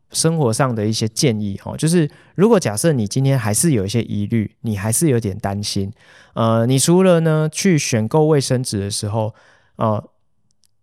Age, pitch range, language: 20-39, 105-135 Hz, Chinese